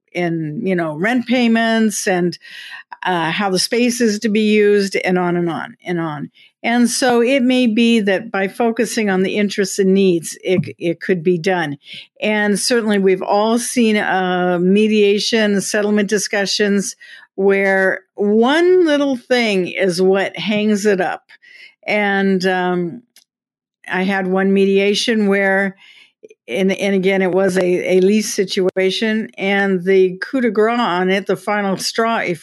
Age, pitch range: 50-69, 185-220 Hz